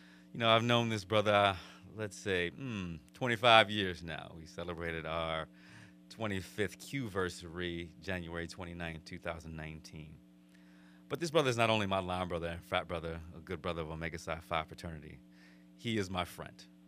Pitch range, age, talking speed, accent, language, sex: 80-95 Hz, 30-49, 155 wpm, American, English, male